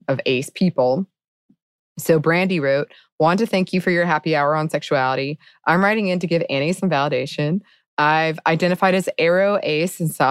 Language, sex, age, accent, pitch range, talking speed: English, female, 20-39, American, 145-190 Hz, 175 wpm